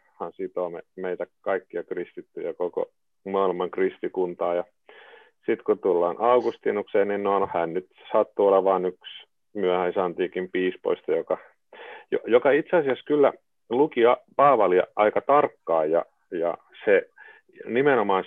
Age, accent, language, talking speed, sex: 30-49, native, Finnish, 125 wpm, male